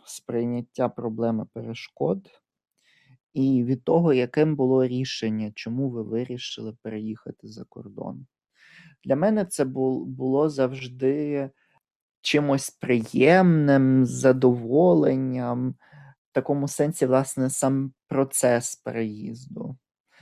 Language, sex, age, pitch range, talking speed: Ukrainian, male, 20-39, 120-145 Hz, 90 wpm